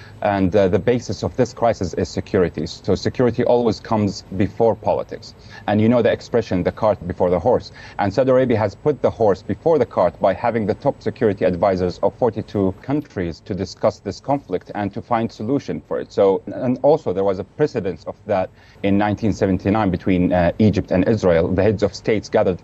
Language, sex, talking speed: English, male, 200 wpm